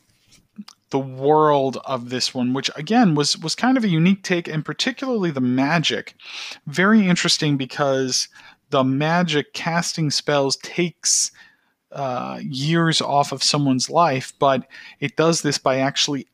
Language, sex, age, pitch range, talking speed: English, male, 40-59, 120-150 Hz, 140 wpm